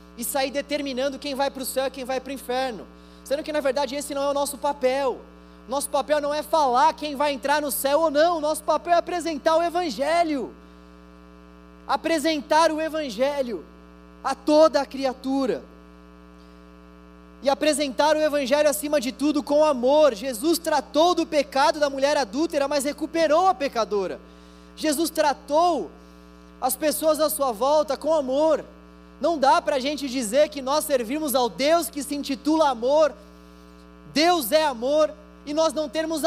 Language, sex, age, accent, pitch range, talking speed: Portuguese, male, 20-39, Brazilian, 260-310 Hz, 165 wpm